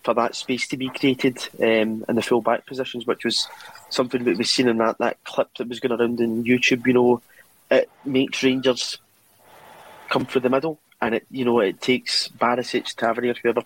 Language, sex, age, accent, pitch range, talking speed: English, male, 30-49, British, 115-130 Hz, 200 wpm